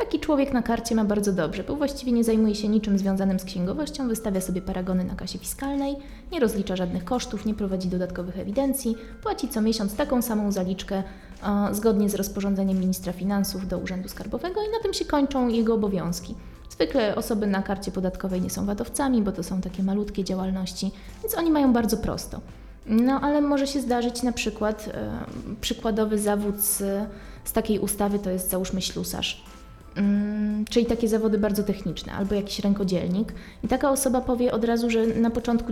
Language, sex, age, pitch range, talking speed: Polish, female, 20-39, 195-230 Hz, 175 wpm